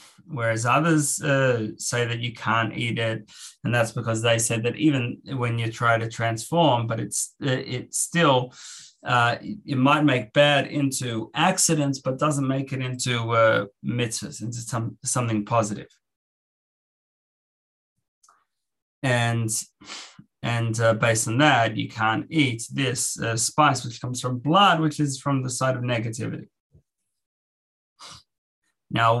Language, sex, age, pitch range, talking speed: English, male, 30-49, 115-135 Hz, 140 wpm